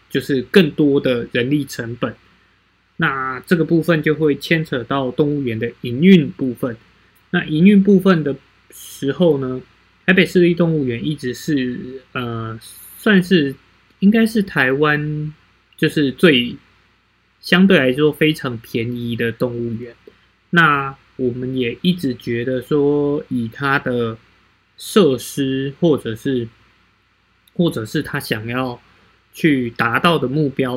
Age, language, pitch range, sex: 20-39, Chinese, 120-155 Hz, male